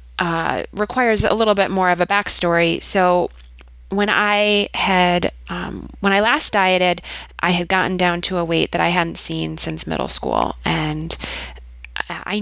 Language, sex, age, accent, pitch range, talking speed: English, female, 20-39, American, 155-190 Hz, 165 wpm